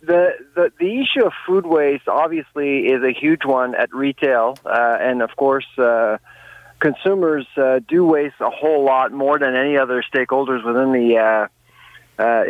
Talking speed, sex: 165 wpm, male